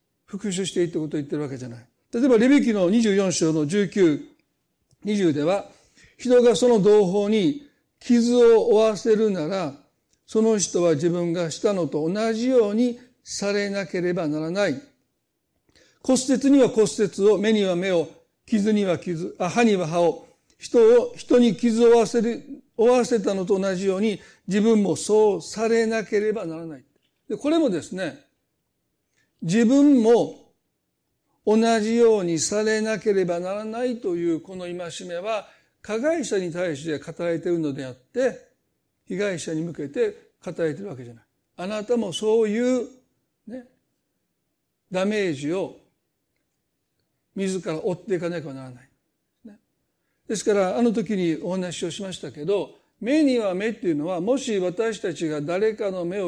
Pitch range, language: 175-235 Hz, Japanese